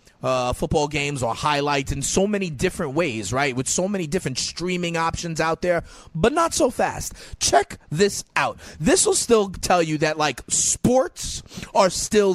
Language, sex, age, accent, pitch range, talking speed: English, male, 30-49, American, 135-190 Hz, 175 wpm